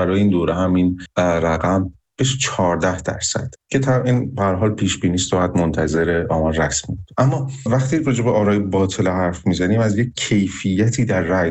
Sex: male